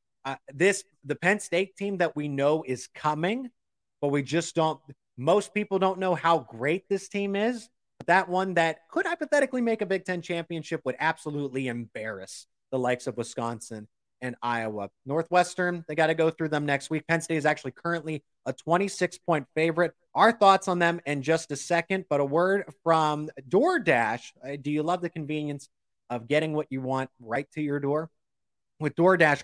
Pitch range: 135-180 Hz